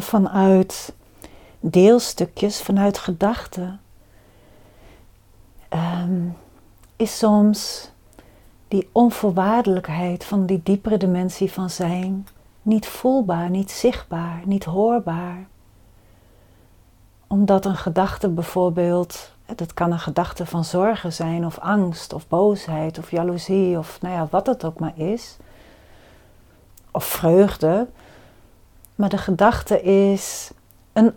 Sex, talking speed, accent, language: female, 95 wpm, Dutch, Dutch